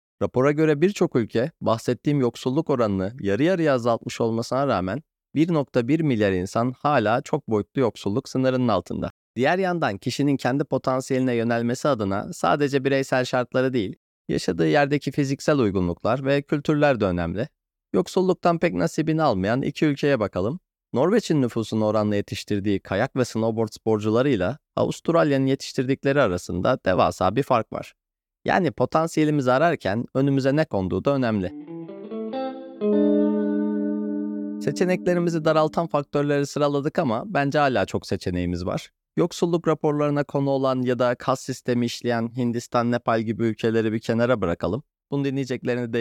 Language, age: Turkish, 30-49